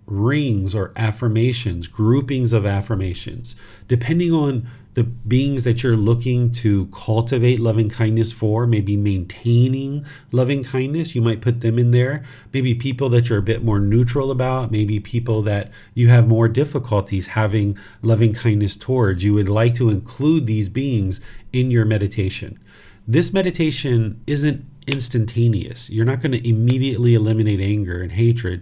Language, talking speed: English, 150 wpm